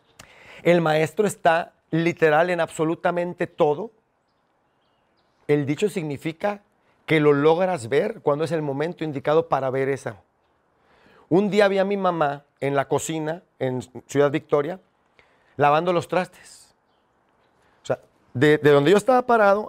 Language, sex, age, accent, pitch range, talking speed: English, male, 40-59, Mexican, 140-175 Hz, 135 wpm